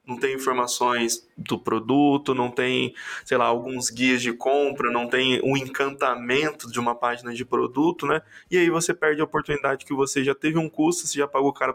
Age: 20-39